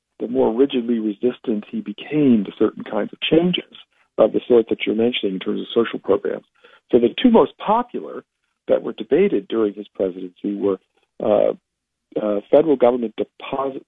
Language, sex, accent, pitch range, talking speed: English, male, American, 100-135 Hz, 170 wpm